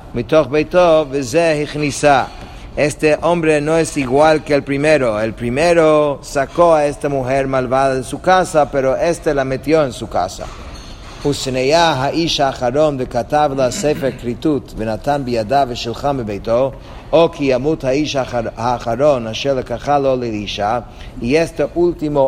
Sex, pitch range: male, 125-155 Hz